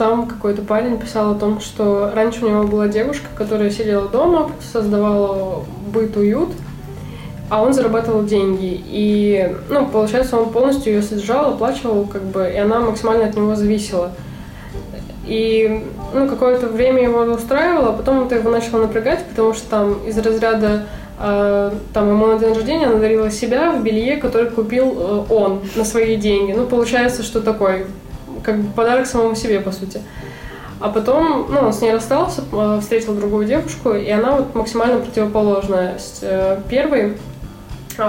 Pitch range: 205-230 Hz